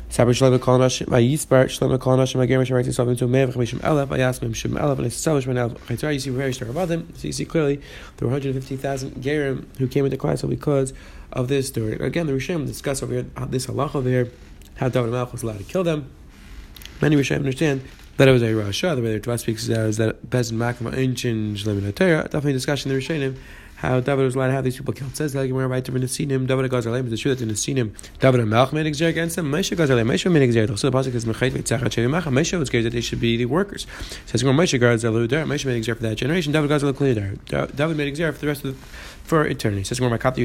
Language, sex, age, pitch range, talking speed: English, male, 20-39, 115-140 Hz, 170 wpm